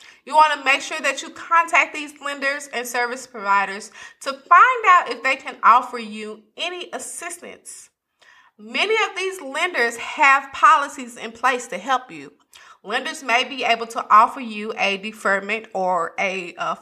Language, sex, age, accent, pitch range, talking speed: English, female, 30-49, American, 225-310 Hz, 165 wpm